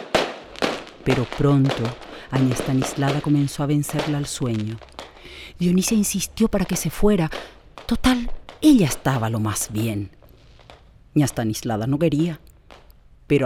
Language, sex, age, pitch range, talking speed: Spanish, female, 40-59, 110-150 Hz, 105 wpm